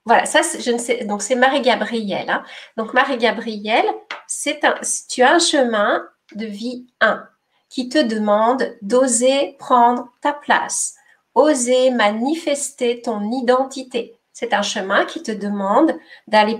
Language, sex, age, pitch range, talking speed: French, female, 40-59, 210-270 Hz, 135 wpm